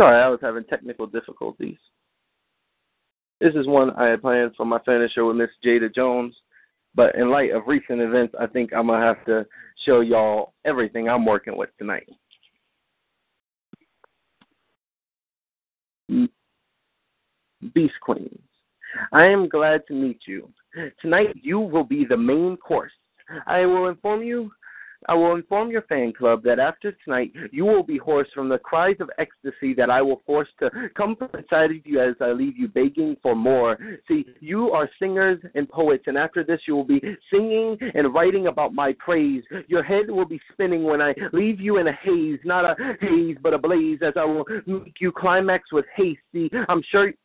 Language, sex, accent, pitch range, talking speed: English, male, American, 130-205 Hz, 180 wpm